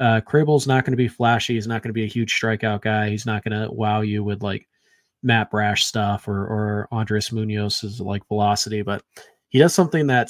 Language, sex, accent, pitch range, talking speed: English, male, American, 105-120 Hz, 220 wpm